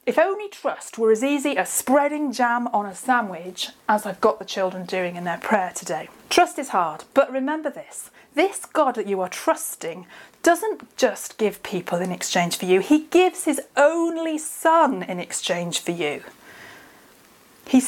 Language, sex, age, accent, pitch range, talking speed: English, female, 30-49, British, 195-280 Hz, 175 wpm